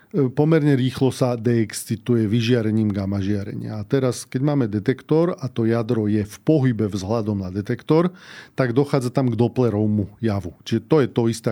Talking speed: 165 wpm